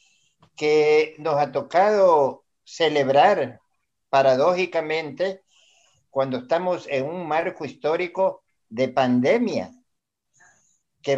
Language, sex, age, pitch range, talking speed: Spanish, male, 50-69, 140-185 Hz, 80 wpm